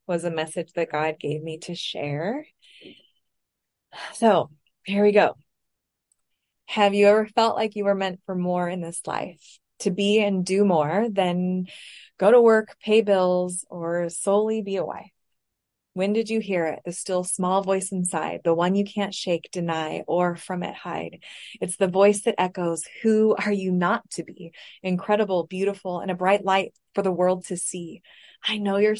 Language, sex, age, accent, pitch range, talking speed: English, female, 20-39, American, 175-205 Hz, 180 wpm